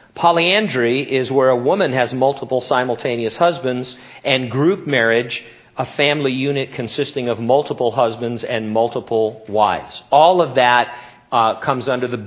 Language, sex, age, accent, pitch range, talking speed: English, male, 50-69, American, 120-170 Hz, 140 wpm